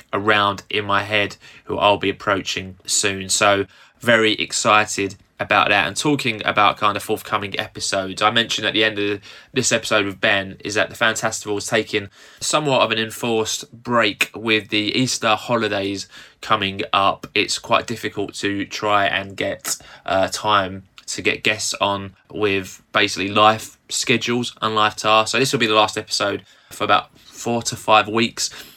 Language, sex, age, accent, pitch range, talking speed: English, male, 20-39, British, 100-110 Hz, 170 wpm